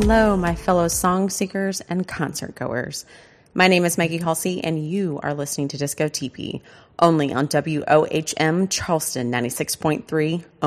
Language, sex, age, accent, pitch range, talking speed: English, female, 30-49, American, 135-175 Hz, 140 wpm